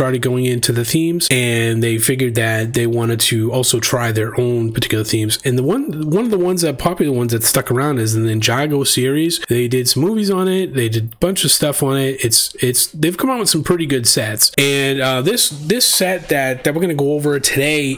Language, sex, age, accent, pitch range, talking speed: English, male, 30-49, American, 120-155 Hz, 235 wpm